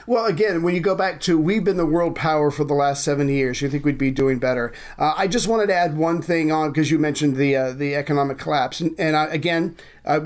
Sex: male